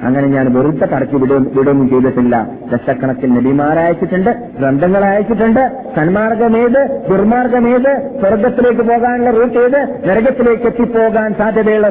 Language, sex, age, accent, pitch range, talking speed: Malayalam, male, 50-69, native, 140-220 Hz, 95 wpm